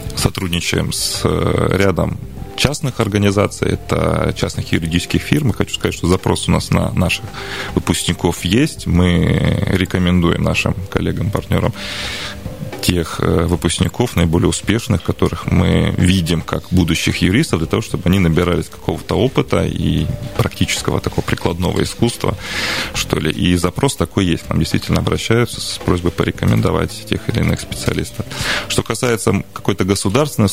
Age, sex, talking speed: 30-49, male, 135 wpm